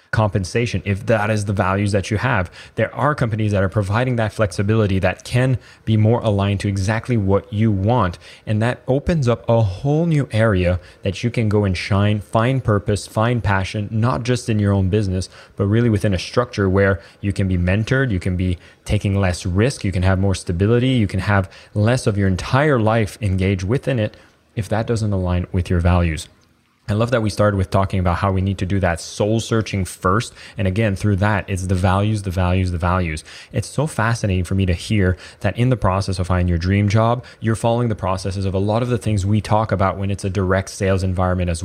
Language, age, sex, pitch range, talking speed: English, 20-39, male, 95-110 Hz, 220 wpm